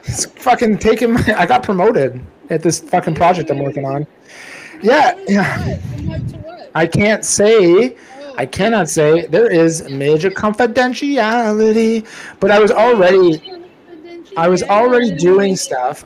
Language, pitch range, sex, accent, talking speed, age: English, 150-200 Hz, male, American, 125 wpm, 30-49